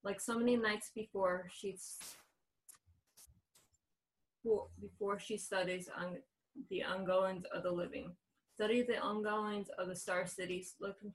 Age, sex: 20-39, female